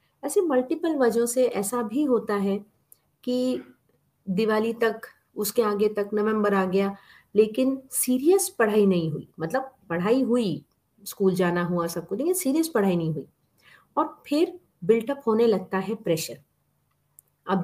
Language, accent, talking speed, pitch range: Hindi, native, 145 wpm, 185-245 Hz